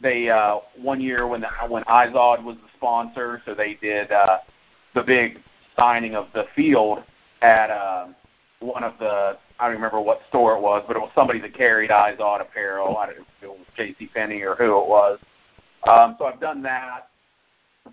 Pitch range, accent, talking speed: 105-120 Hz, American, 200 wpm